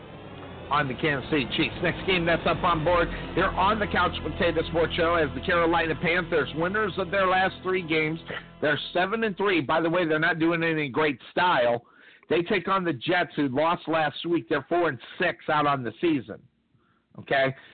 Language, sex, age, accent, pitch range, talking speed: English, male, 50-69, American, 150-185 Hz, 200 wpm